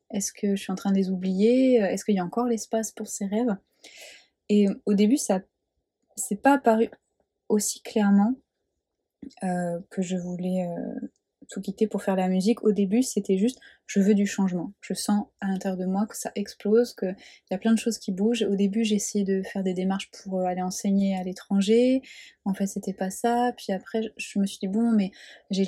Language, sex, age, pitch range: French, female, 20-39, 190-220 Hz